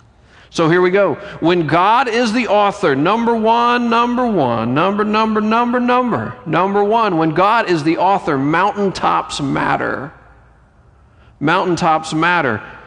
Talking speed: 130 wpm